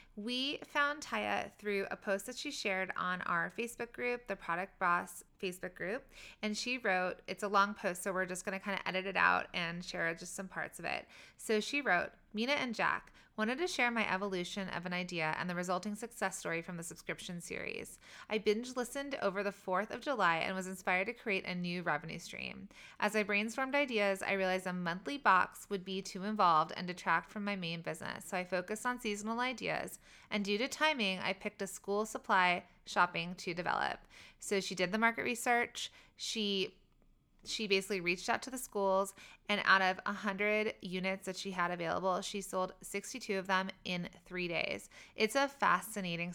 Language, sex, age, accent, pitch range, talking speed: English, female, 20-39, American, 180-220 Hz, 200 wpm